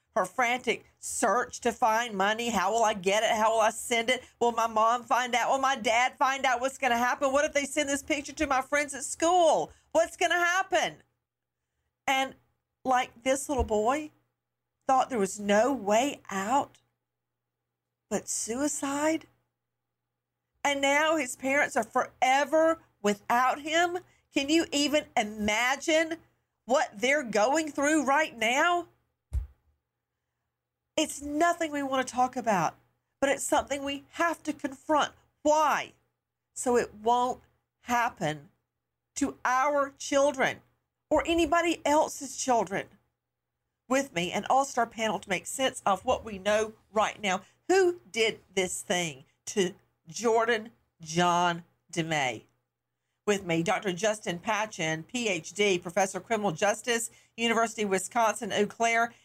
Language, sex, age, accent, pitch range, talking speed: English, female, 50-69, American, 210-290 Hz, 140 wpm